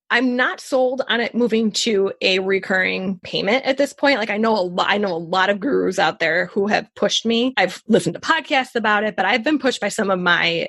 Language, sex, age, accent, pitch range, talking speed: English, female, 20-39, American, 195-255 Hz, 245 wpm